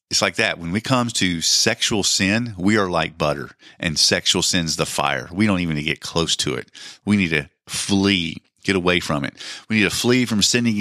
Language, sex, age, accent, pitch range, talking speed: English, male, 40-59, American, 90-120 Hz, 215 wpm